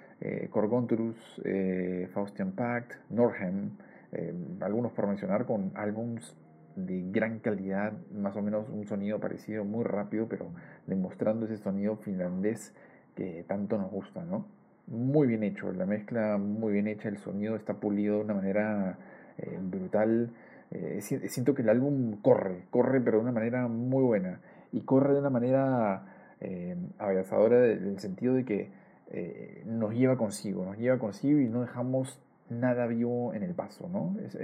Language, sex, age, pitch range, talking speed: Spanish, male, 40-59, 100-125 Hz, 160 wpm